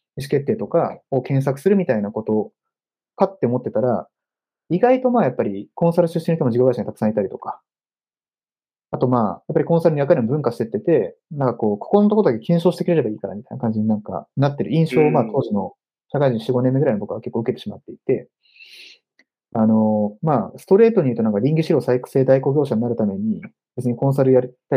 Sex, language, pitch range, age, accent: male, Japanese, 115-195 Hz, 30-49, native